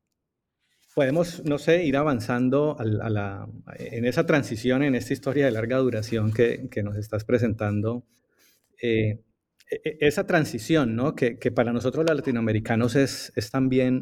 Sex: male